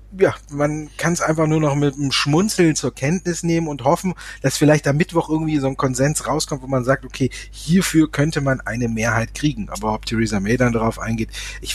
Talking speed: 215 wpm